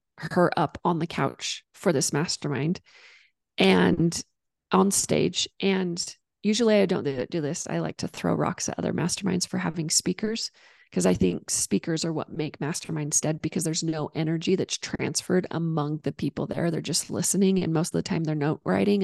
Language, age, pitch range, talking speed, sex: English, 30-49, 170-220 Hz, 185 wpm, female